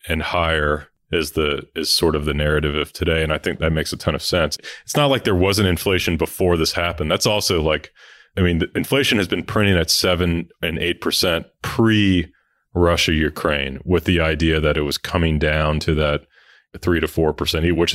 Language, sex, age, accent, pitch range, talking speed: English, male, 30-49, American, 75-85 Hz, 205 wpm